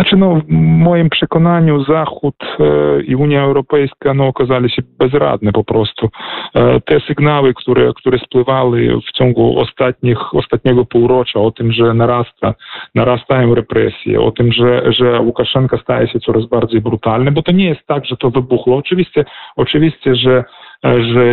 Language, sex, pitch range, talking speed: Polish, male, 115-145 Hz, 155 wpm